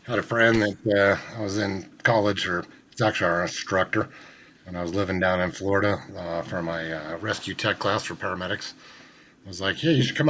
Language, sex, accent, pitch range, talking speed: English, male, American, 90-105 Hz, 215 wpm